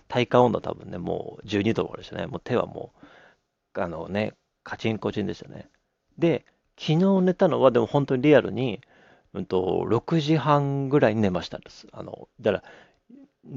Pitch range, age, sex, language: 110-165 Hz, 40-59, male, Japanese